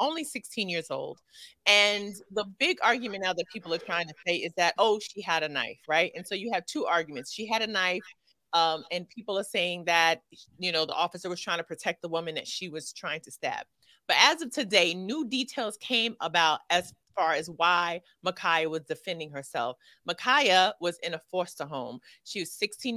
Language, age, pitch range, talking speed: English, 30-49, 170-235 Hz, 210 wpm